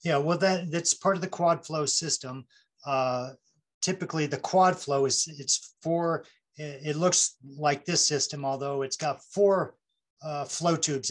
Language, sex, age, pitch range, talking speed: English, male, 40-59, 130-155 Hz, 160 wpm